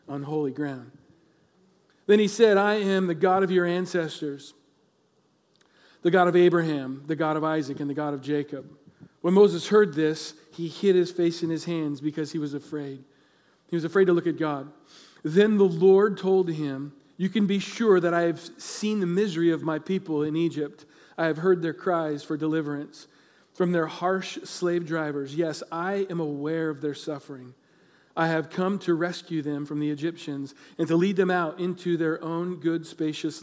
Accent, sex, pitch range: American, male, 150-180 Hz